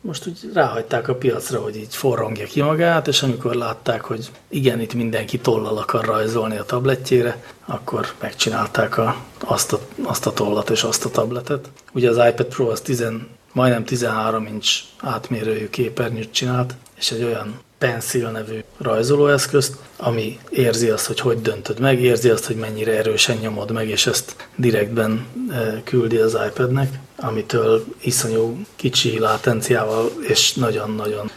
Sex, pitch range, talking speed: male, 110-125 Hz, 150 wpm